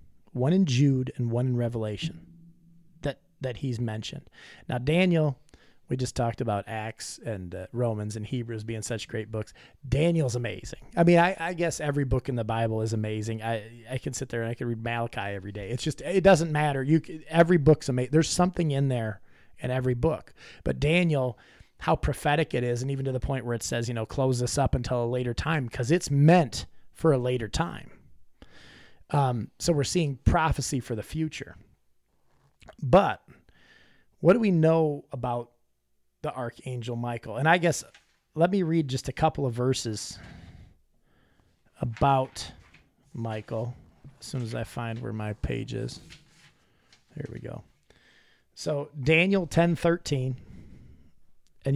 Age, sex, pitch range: 30-49, male, 115-155 Hz